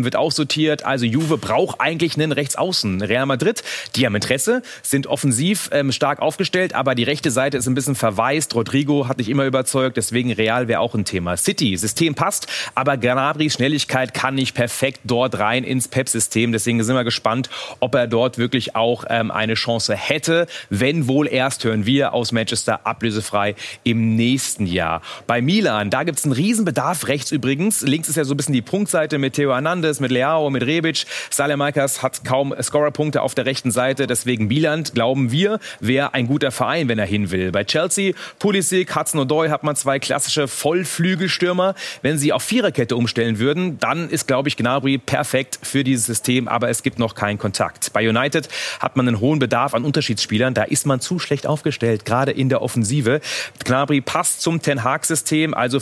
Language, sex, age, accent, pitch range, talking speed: German, male, 30-49, German, 120-150 Hz, 190 wpm